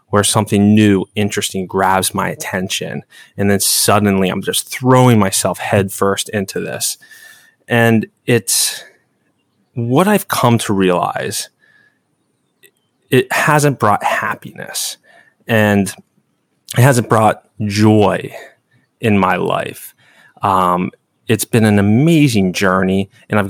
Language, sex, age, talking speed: English, male, 20-39, 110 wpm